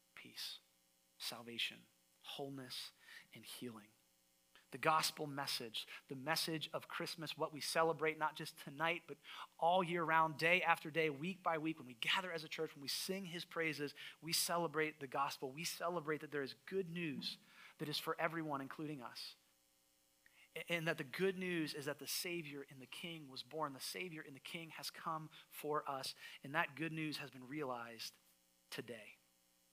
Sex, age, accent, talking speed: male, 30-49, American, 175 wpm